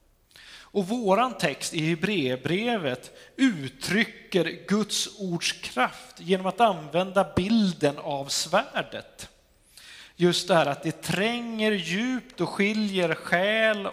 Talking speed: 105 wpm